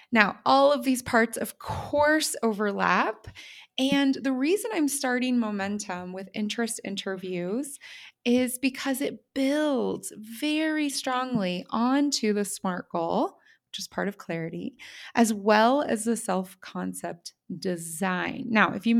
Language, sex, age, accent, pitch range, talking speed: English, female, 20-39, American, 200-265 Hz, 130 wpm